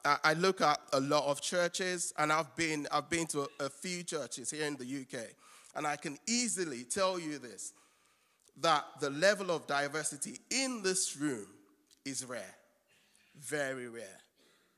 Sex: male